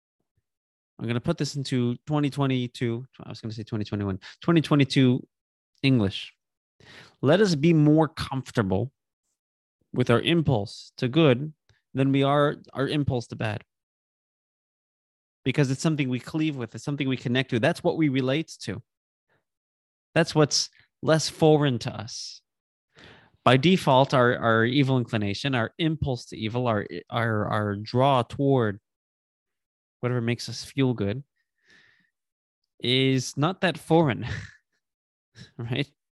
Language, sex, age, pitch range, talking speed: English, male, 20-39, 120-150 Hz, 130 wpm